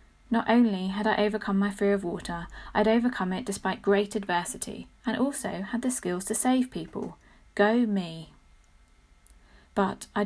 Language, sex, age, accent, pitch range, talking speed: English, female, 30-49, British, 175-215 Hz, 160 wpm